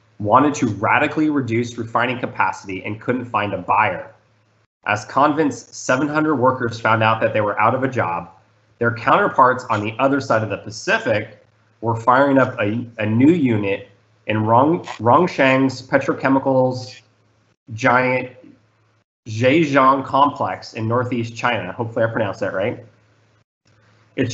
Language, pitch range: English, 110-130 Hz